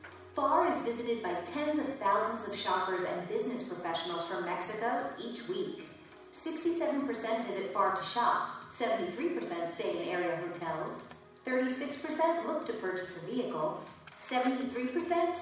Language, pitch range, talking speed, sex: English, 185-270 Hz, 130 wpm, female